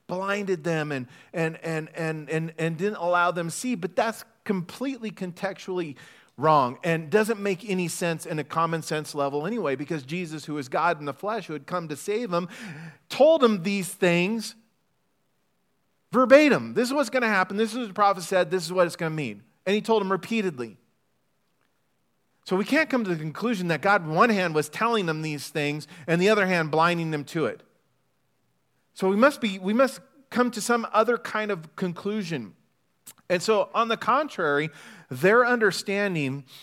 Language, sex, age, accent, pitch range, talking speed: English, male, 40-59, American, 155-215 Hz, 190 wpm